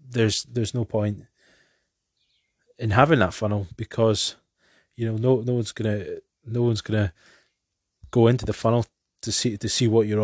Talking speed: 165 wpm